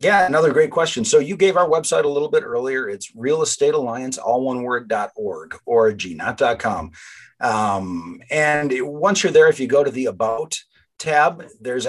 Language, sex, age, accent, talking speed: English, male, 40-59, American, 185 wpm